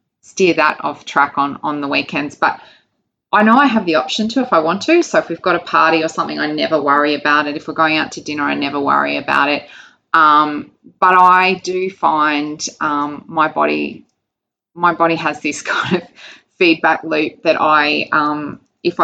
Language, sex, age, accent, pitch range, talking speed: English, female, 20-39, Australian, 135-165 Hz, 200 wpm